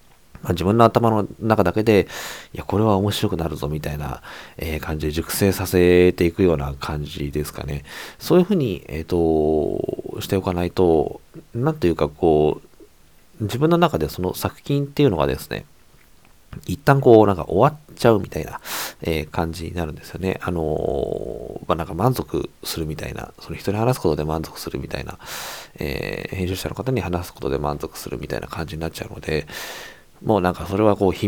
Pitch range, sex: 80-115 Hz, male